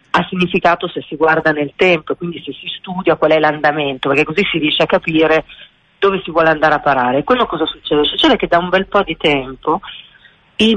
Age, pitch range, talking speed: 40-59, 155-205 Hz, 210 wpm